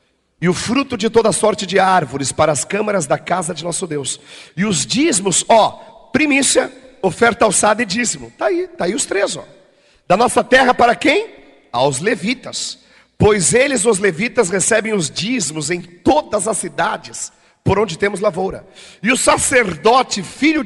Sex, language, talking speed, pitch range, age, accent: male, Portuguese, 170 wpm, 180-250 Hz, 50-69, Brazilian